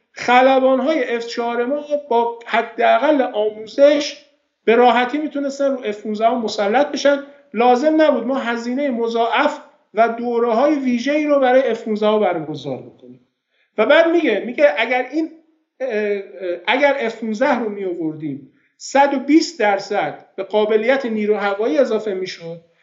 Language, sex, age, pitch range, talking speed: Persian, male, 50-69, 210-280 Hz, 130 wpm